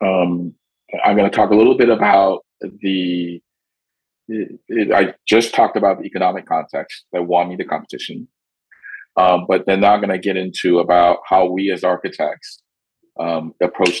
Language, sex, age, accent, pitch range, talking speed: English, male, 40-59, American, 85-110 Hz, 170 wpm